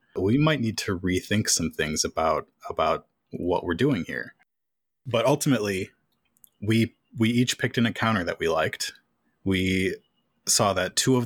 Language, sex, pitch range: English, male, 90-115 Hz